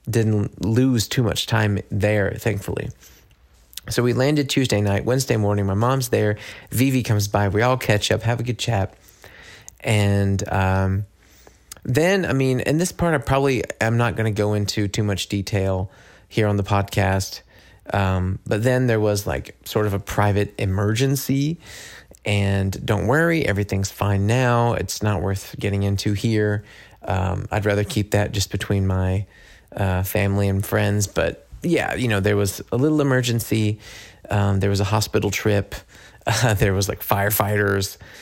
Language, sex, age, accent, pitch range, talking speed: English, male, 30-49, American, 100-115 Hz, 165 wpm